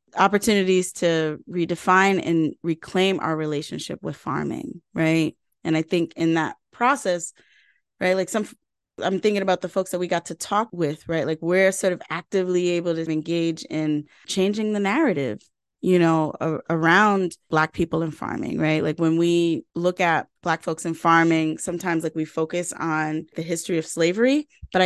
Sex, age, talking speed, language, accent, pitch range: female, 20-39, 170 wpm, English, American, 160-190 Hz